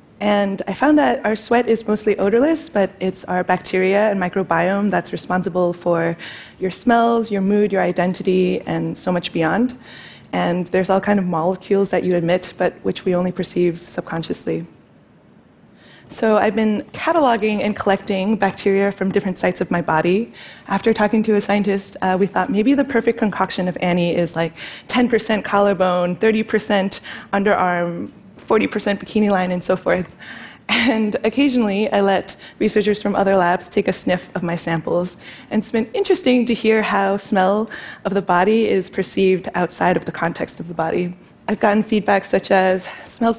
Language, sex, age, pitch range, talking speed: Portuguese, female, 20-39, 180-215 Hz, 170 wpm